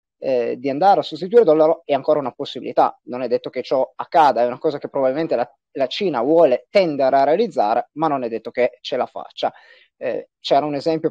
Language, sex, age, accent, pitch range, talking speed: Italian, male, 20-39, native, 130-170 Hz, 220 wpm